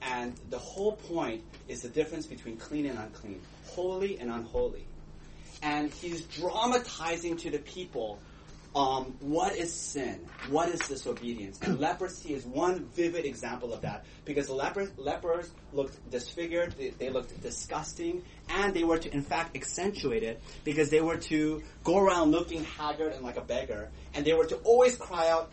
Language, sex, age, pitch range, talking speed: English, male, 30-49, 120-170 Hz, 170 wpm